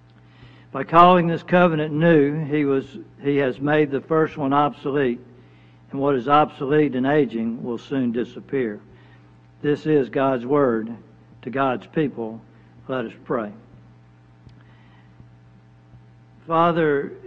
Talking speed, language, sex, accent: 115 wpm, English, male, American